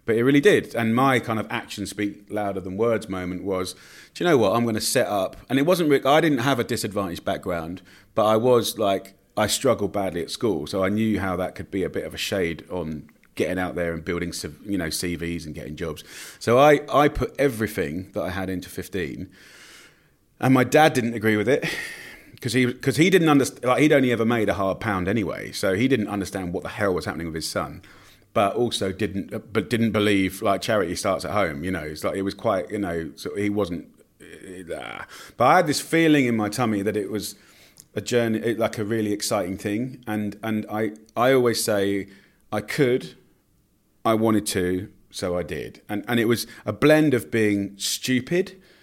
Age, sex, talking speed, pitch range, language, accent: 30-49, male, 215 wpm, 95-120 Hz, English, British